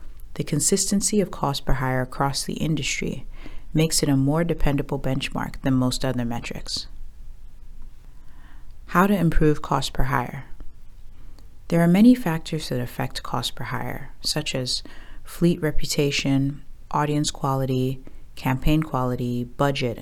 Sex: female